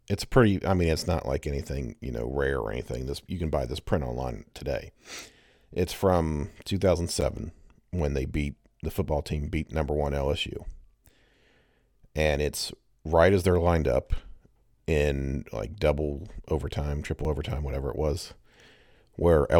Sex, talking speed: male, 155 wpm